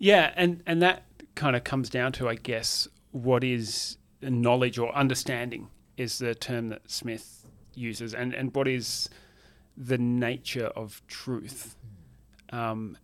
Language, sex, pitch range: English, male, 115-130 Hz